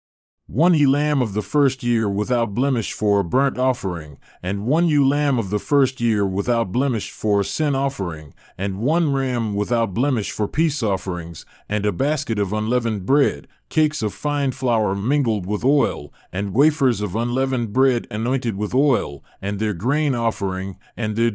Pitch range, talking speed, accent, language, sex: 105-135 Hz, 175 wpm, American, English, male